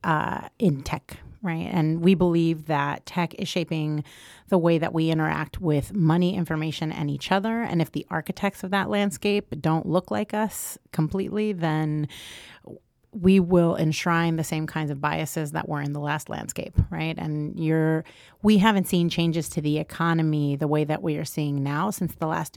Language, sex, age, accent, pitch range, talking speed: English, female, 30-49, American, 150-175 Hz, 185 wpm